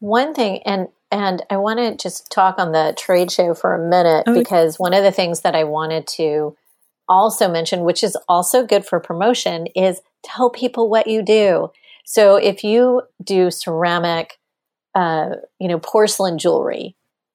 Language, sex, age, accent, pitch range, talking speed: English, female, 30-49, American, 170-200 Hz, 170 wpm